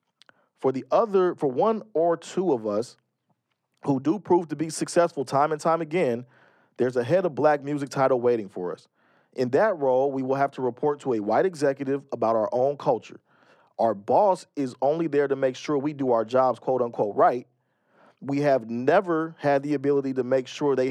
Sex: male